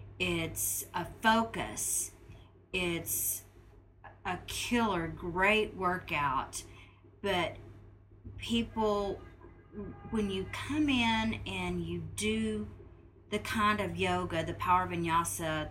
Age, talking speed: 40-59, 90 wpm